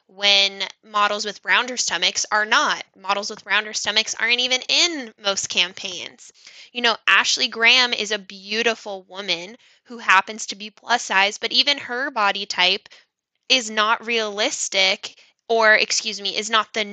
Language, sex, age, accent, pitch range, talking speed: English, female, 10-29, American, 200-240 Hz, 155 wpm